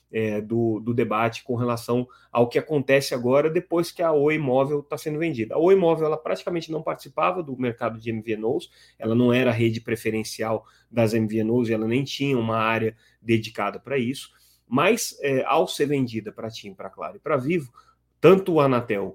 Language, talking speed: Portuguese, 190 wpm